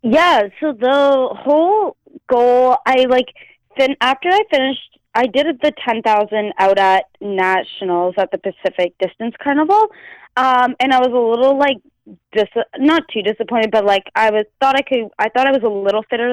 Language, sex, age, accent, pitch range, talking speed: English, female, 20-39, American, 190-255 Hz, 185 wpm